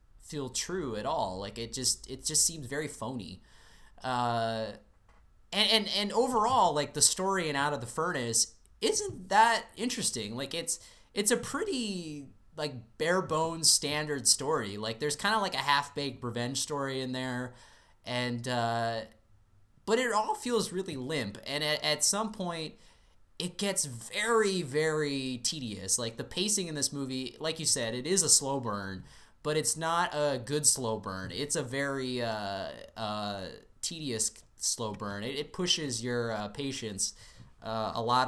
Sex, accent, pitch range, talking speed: male, American, 115-155 Hz, 165 wpm